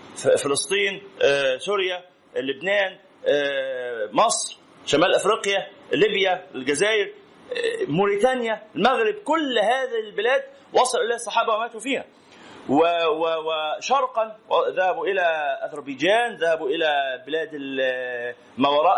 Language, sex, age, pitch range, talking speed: Arabic, male, 30-49, 200-280 Hz, 80 wpm